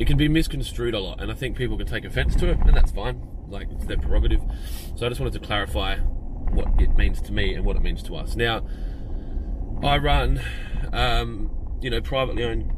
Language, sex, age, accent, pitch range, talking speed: English, male, 20-39, Australian, 80-120 Hz, 220 wpm